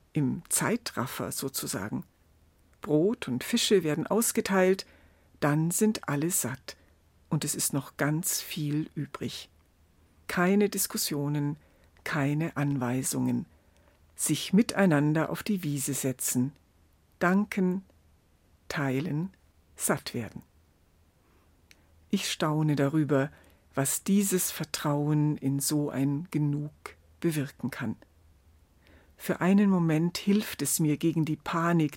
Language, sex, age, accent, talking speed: German, female, 60-79, German, 100 wpm